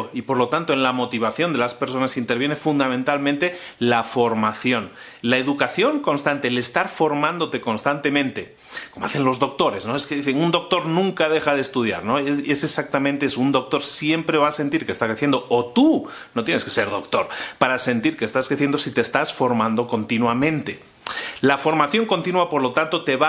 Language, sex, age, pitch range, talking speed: Spanish, male, 30-49, 130-155 Hz, 190 wpm